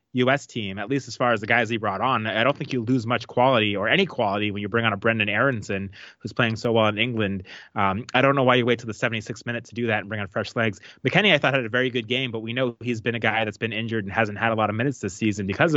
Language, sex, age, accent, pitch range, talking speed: English, male, 20-39, American, 110-130 Hz, 310 wpm